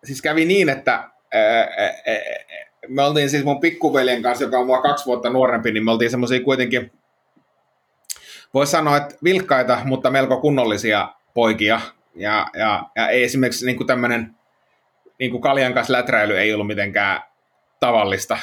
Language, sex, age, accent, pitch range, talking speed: Finnish, male, 30-49, native, 115-140 Hz, 155 wpm